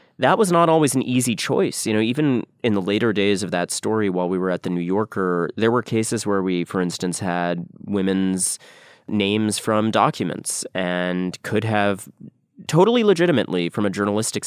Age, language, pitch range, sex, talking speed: 30-49, English, 95-115 Hz, male, 185 wpm